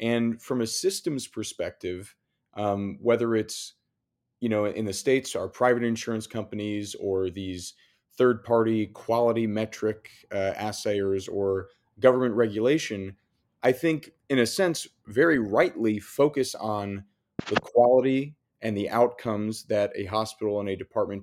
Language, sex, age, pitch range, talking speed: English, male, 30-49, 105-125 Hz, 135 wpm